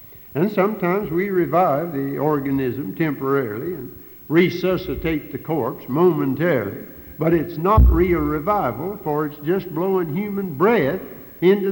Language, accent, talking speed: English, American, 125 wpm